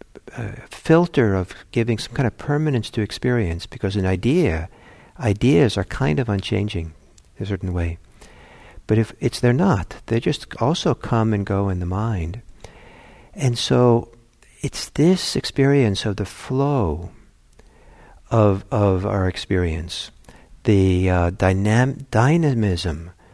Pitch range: 100-130 Hz